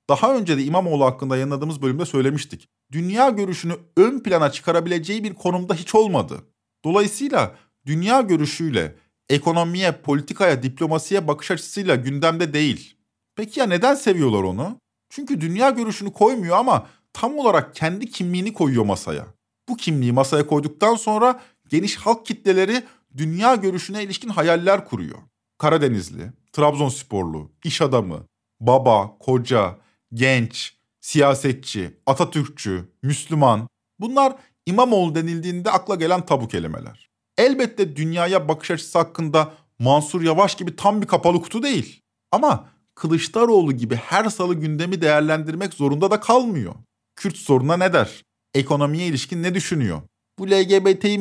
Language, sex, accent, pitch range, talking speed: Turkish, male, native, 140-195 Hz, 125 wpm